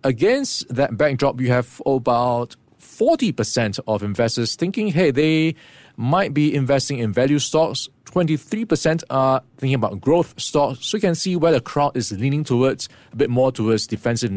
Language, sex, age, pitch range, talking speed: English, male, 20-39, 115-150 Hz, 165 wpm